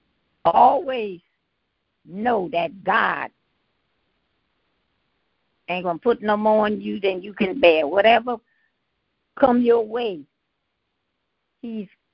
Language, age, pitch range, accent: English, 60-79, 195-235 Hz, American